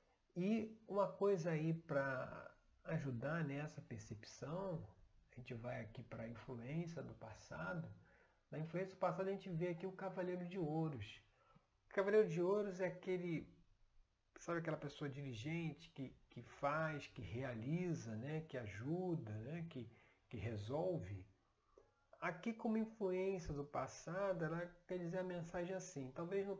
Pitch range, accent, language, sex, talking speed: 125-170 Hz, Brazilian, Portuguese, male, 145 wpm